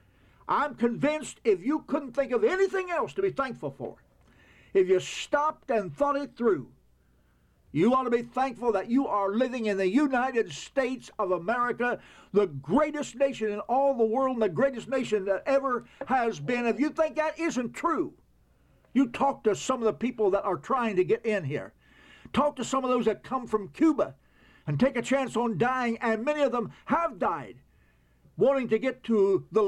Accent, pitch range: American, 205-280 Hz